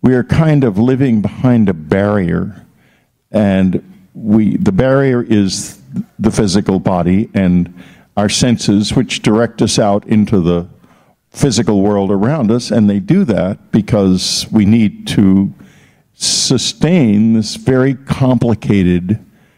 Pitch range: 100-125 Hz